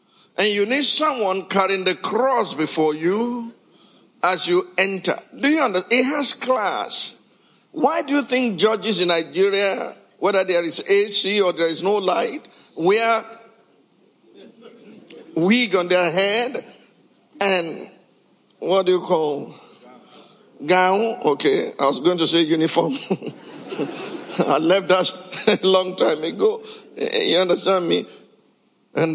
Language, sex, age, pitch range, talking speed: English, male, 50-69, 170-250 Hz, 130 wpm